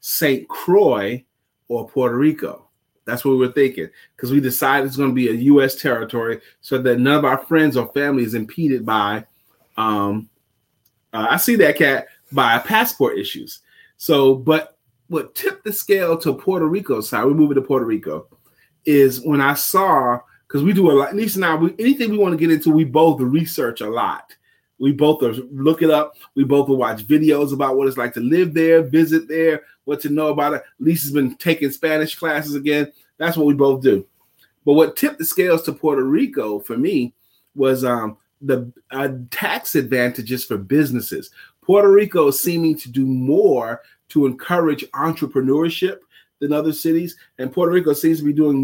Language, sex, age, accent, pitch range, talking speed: English, male, 30-49, American, 130-160 Hz, 185 wpm